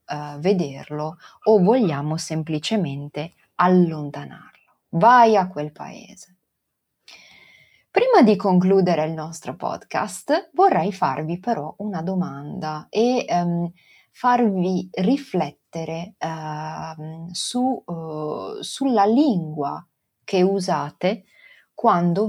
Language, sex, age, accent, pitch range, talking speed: Italian, female, 30-49, native, 160-215 Hz, 75 wpm